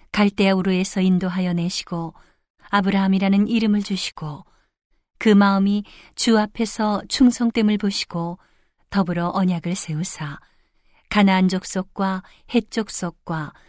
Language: Korean